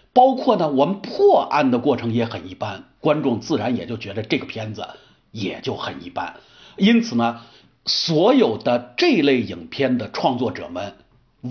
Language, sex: Chinese, male